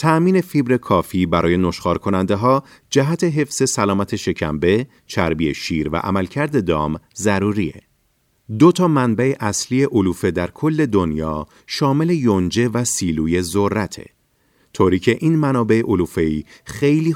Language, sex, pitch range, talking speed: Persian, male, 90-135 Hz, 125 wpm